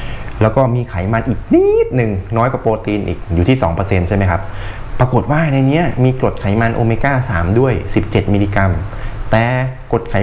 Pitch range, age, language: 100-130 Hz, 20-39, Thai